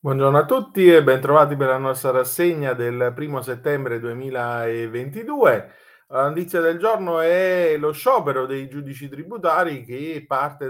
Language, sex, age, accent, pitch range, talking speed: Italian, male, 30-49, native, 115-165 Hz, 140 wpm